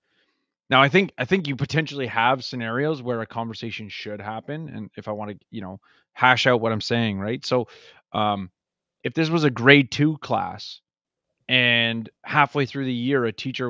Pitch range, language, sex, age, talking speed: 115-145 Hz, English, male, 20-39, 190 wpm